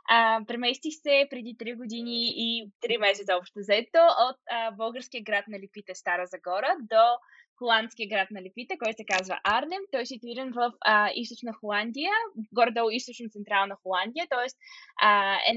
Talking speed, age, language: 155 wpm, 20-39, Bulgarian